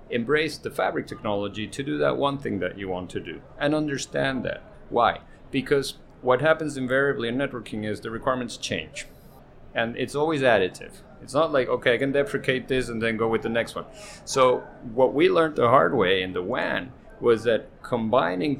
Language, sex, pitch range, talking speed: English, male, 110-145 Hz, 195 wpm